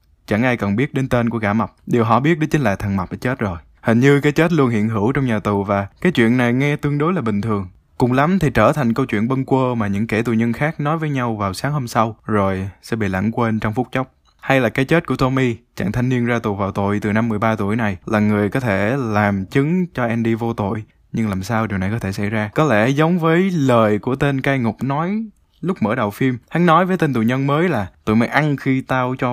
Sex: male